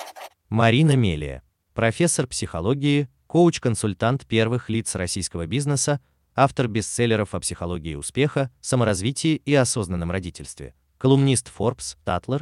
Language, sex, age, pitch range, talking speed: Russian, male, 30-49, 90-135 Hz, 100 wpm